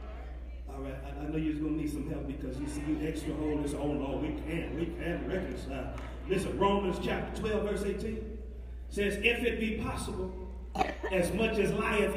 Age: 40-59